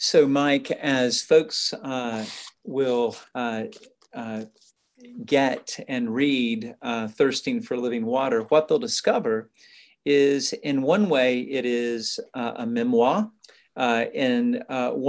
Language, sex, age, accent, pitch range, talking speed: English, male, 50-69, American, 120-180 Hz, 125 wpm